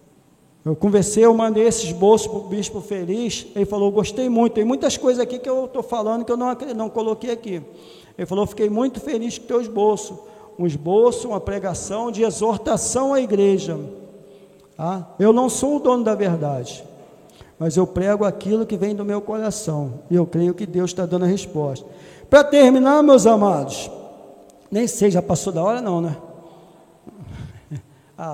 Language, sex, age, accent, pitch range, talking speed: Portuguese, male, 50-69, Brazilian, 195-255 Hz, 180 wpm